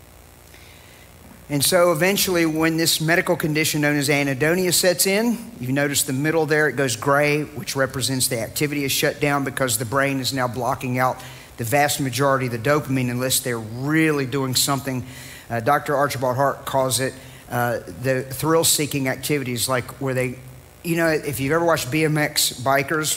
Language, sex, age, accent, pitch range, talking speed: English, male, 50-69, American, 130-155 Hz, 165 wpm